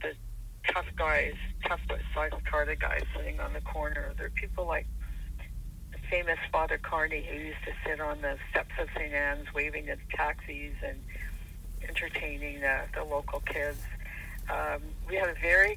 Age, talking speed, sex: 60-79, 165 wpm, female